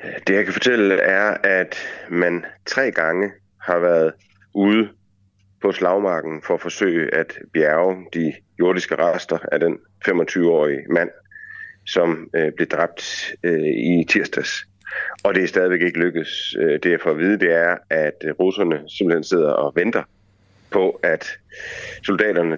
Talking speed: 145 wpm